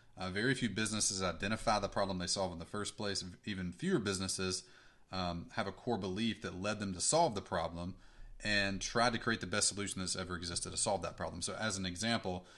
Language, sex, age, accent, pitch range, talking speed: English, male, 30-49, American, 95-115 Hz, 220 wpm